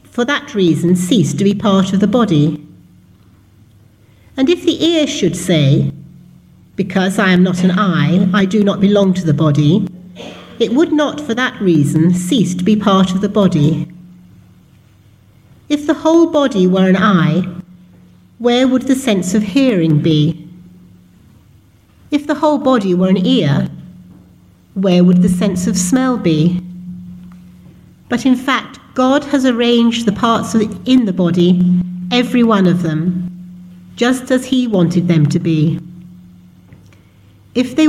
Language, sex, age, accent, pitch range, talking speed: English, female, 60-79, British, 160-220 Hz, 150 wpm